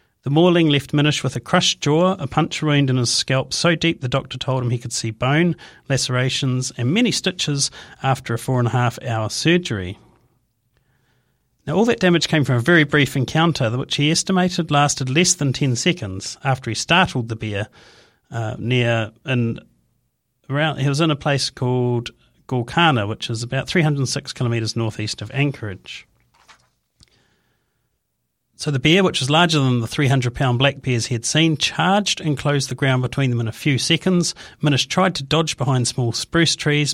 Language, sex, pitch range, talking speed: English, male, 120-150 Hz, 180 wpm